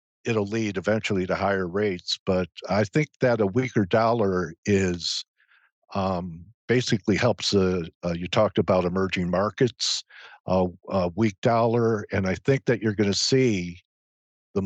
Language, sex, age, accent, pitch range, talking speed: English, male, 50-69, American, 95-115 Hz, 150 wpm